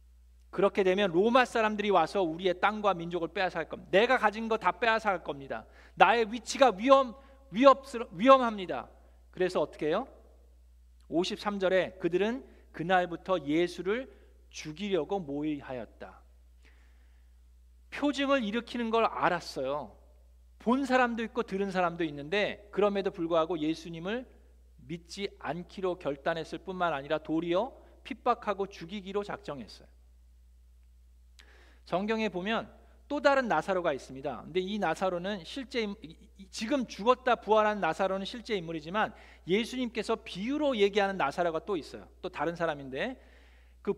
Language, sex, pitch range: Korean, male, 150-220 Hz